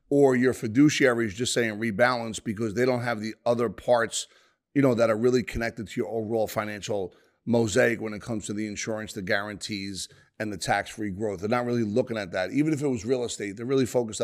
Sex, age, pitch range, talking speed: male, 30-49, 110-135 Hz, 220 wpm